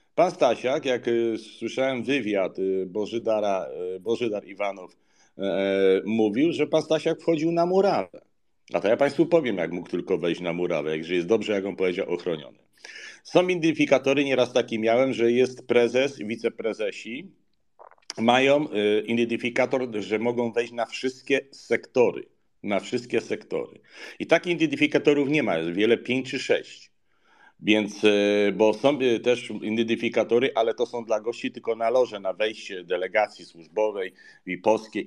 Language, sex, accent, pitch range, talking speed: Polish, male, native, 105-140 Hz, 140 wpm